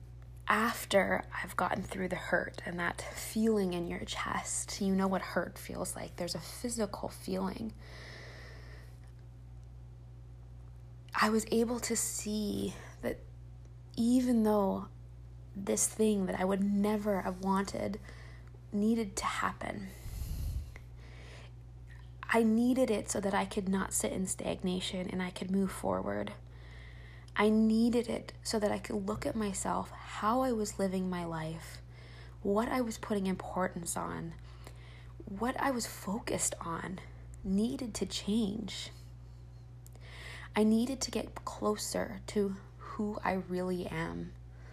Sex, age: female, 20-39